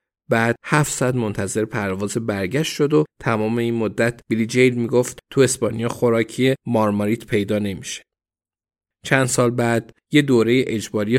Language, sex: Persian, male